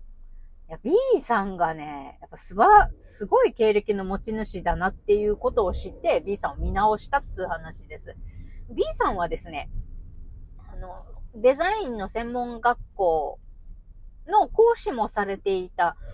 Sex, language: female, Japanese